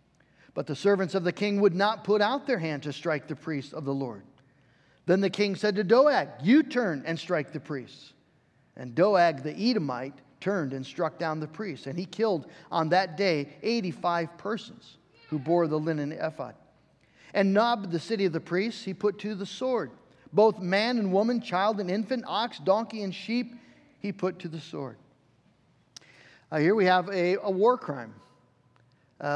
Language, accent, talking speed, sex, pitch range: English, American, 185 wpm, male, 155-215 Hz